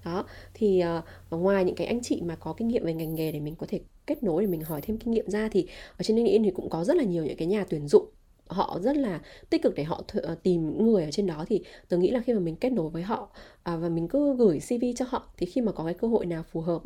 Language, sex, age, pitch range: Vietnamese, female, 20-39, 170-235 Hz